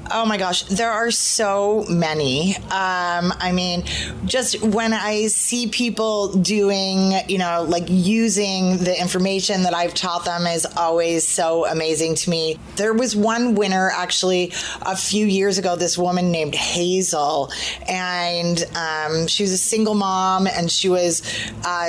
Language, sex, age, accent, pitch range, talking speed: English, female, 30-49, American, 170-195 Hz, 155 wpm